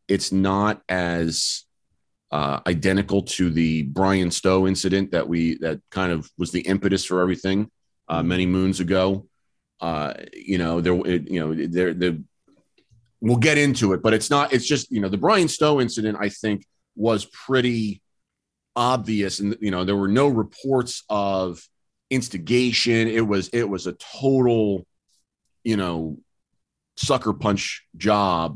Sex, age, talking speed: male, 30-49, 150 wpm